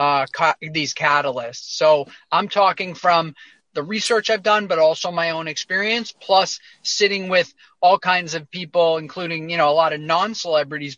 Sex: male